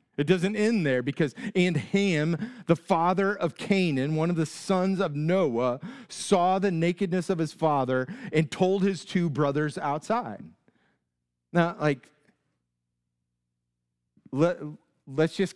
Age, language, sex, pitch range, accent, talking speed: 40-59, English, male, 140-190 Hz, American, 125 wpm